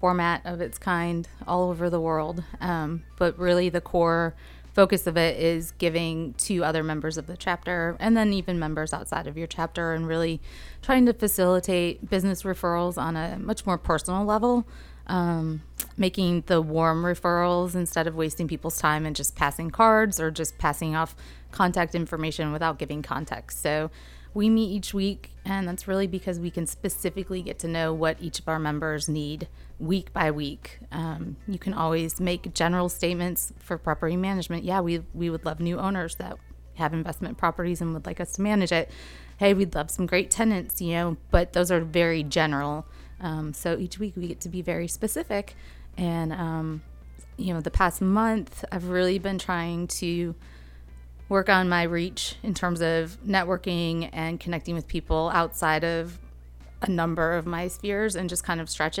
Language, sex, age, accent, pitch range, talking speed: English, female, 30-49, American, 160-185 Hz, 180 wpm